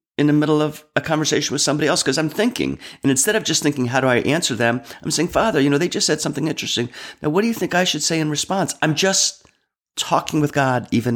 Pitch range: 120-155 Hz